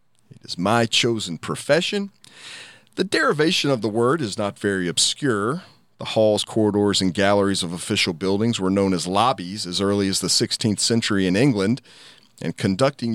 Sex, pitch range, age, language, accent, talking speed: male, 100-135 Hz, 40-59, English, American, 165 wpm